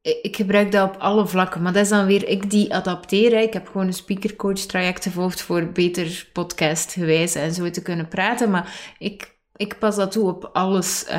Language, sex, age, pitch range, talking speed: Dutch, female, 20-39, 180-210 Hz, 200 wpm